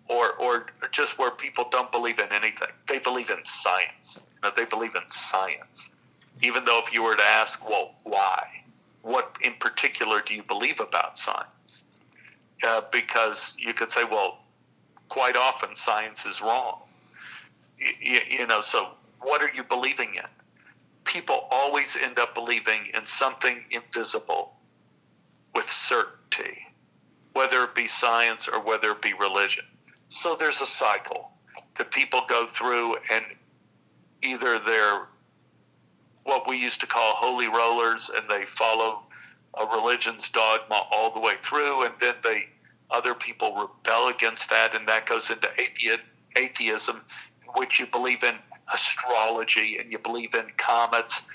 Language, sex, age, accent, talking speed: English, male, 50-69, American, 150 wpm